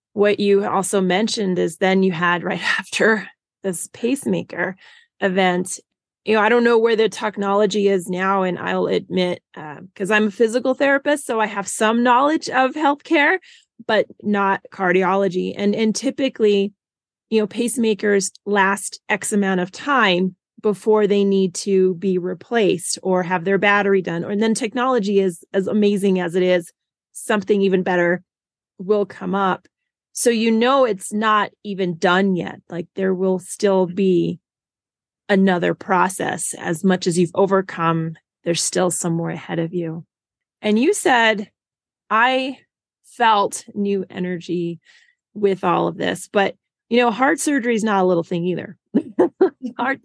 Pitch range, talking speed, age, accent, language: 185-225 Hz, 155 wpm, 30-49, American, English